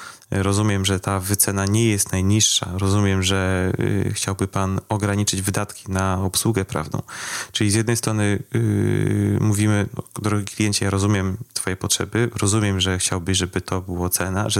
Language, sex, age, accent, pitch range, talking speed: Polish, male, 30-49, native, 95-115 Hz, 140 wpm